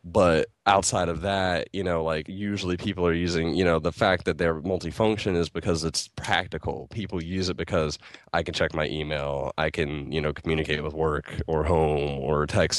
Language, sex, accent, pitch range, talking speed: English, male, American, 80-95 Hz, 195 wpm